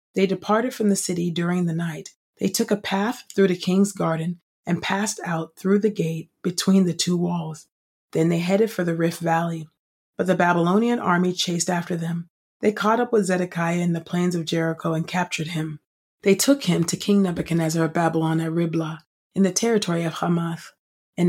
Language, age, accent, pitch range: English, 30-49, American, 165-185 Hz